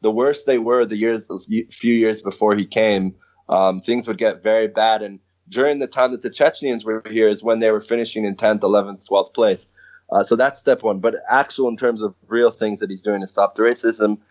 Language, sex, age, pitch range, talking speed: English, male, 20-39, 105-120 Hz, 235 wpm